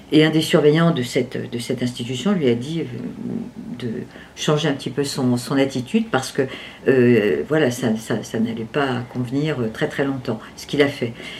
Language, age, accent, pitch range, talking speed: French, 50-69, French, 130-180 Hz, 195 wpm